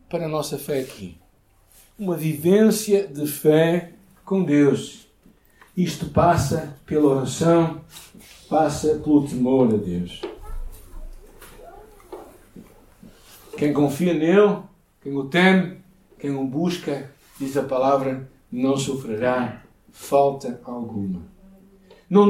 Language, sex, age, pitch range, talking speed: Portuguese, male, 60-79, 135-200 Hz, 100 wpm